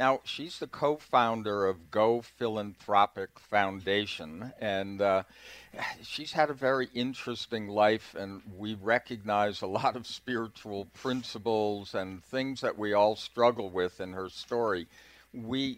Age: 50-69